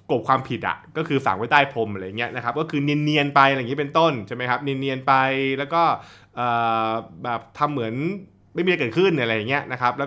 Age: 20-39